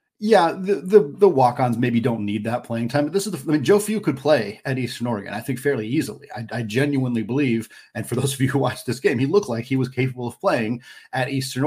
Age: 30-49